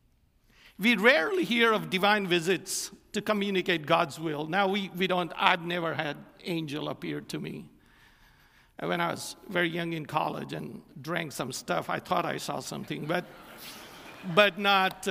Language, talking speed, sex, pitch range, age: English, 160 wpm, male, 170-215 Hz, 60-79